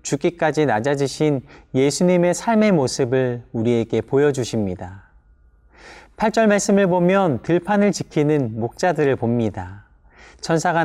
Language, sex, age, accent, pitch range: Korean, male, 40-59, native, 130-180 Hz